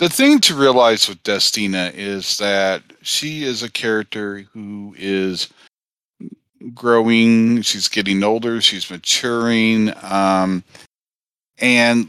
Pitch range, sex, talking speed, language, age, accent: 95-120 Hz, male, 110 wpm, English, 40-59, American